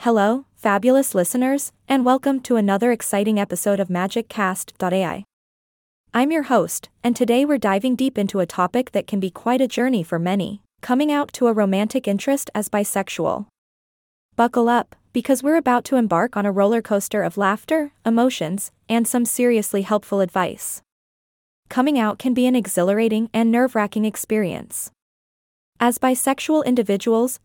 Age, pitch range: 20-39, 200-250 Hz